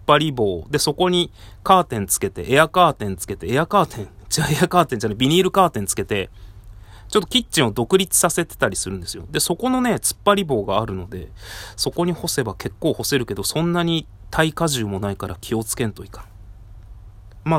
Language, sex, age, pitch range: Japanese, male, 30-49, 100-150 Hz